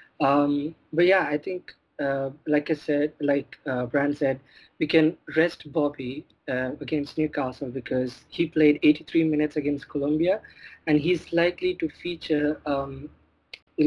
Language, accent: English, Indian